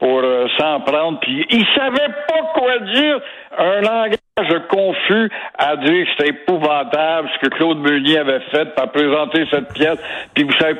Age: 60-79